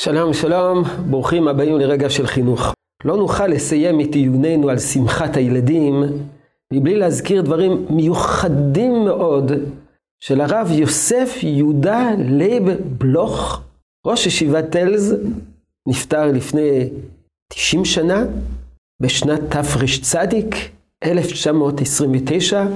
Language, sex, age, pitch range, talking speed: Hebrew, male, 50-69, 140-200 Hz, 95 wpm